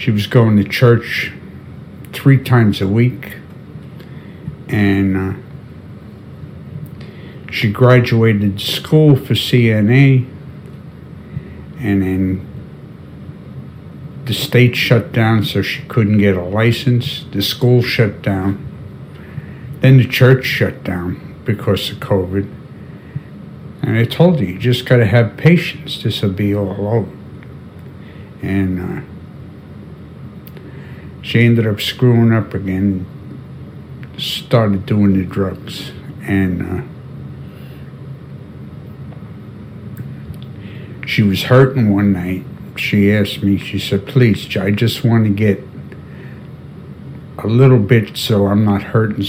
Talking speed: 110 wpm